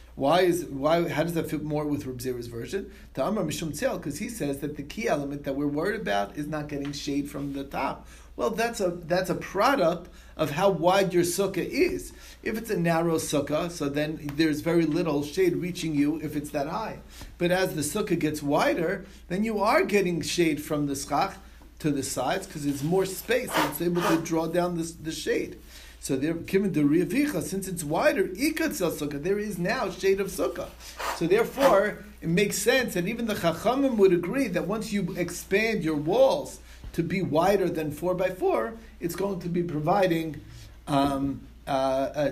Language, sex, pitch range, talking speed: English, male, 145-185 Hz, 190 wpm